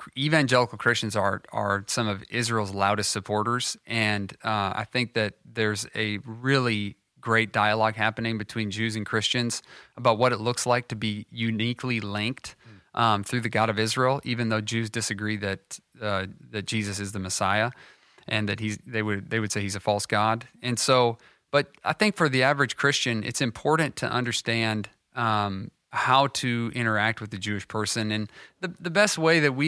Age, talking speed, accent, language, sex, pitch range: 30-49, 180 wpm, American, English, male, 110-135 Hz